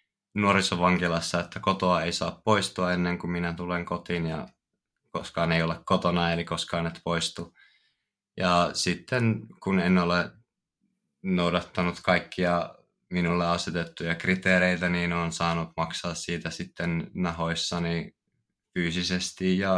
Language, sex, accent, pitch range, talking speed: Finnish, male, native, 85-100 Hz, 120 wpm